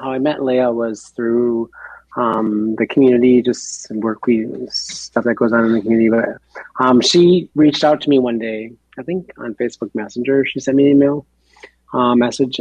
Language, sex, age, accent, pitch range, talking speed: English, male, 30-49, American, 105-125 Hz, 190 wpm